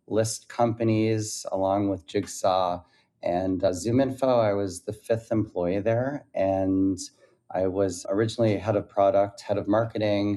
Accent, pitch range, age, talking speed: American, 95-105 Hz, 30-49, 140 wpm